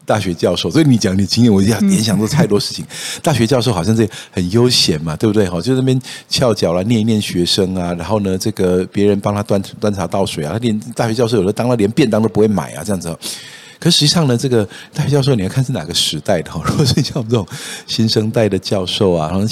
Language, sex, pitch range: Chinese, male, 95-130 Hz